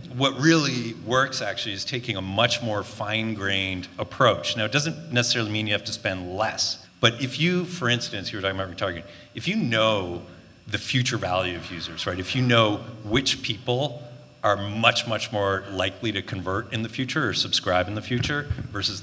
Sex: male